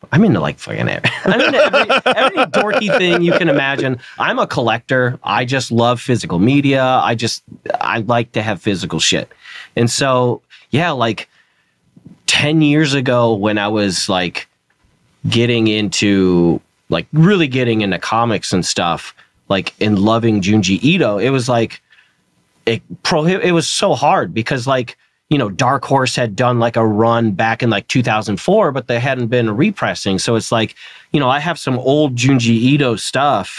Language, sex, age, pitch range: English, male, 30-49, 105-135 Hz